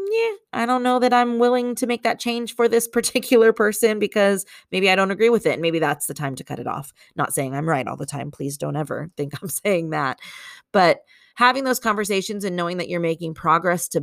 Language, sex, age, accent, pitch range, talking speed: English, female, 30-49, American, 160-245 Hz, 230 wpm